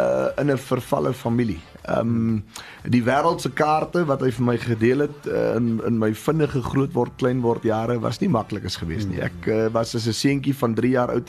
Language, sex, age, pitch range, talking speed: English, male, 30-49, 105-130 Hz, 180 wpm